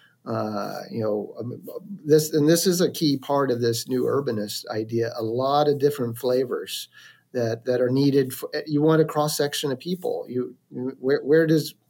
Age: 40-59